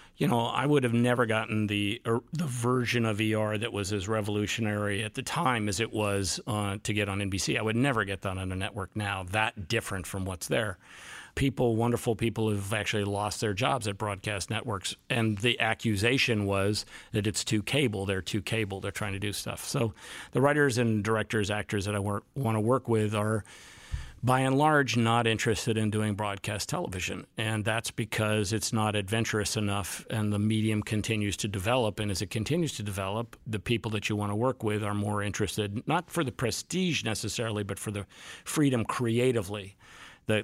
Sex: male